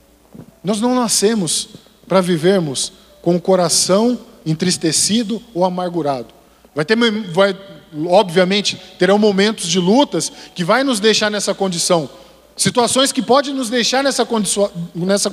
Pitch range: 195-265 Hz